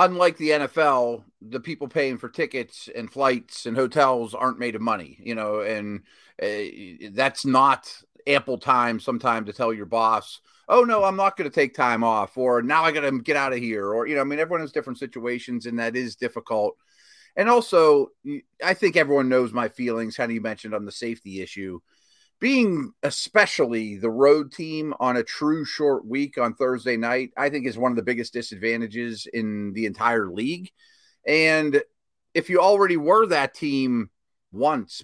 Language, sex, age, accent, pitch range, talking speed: English, male, 30-49, American, 120-160 Hz, 185 wpm